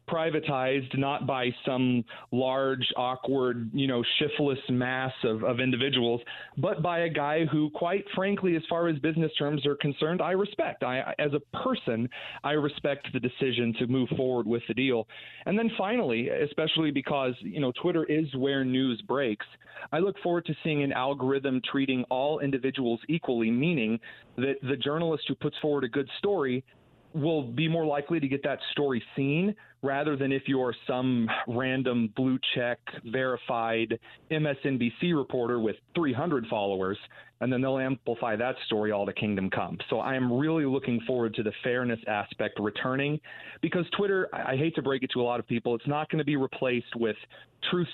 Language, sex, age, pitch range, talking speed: English, male, 40-59, 120-150 Hz, 180 wpm